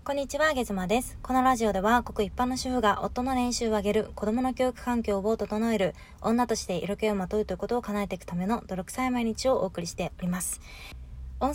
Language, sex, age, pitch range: Japanese, female, 20-39, 185-250 Hz